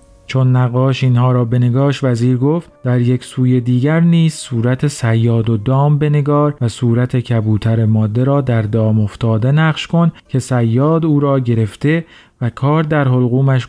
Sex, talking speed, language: male, 160 wpm, Persian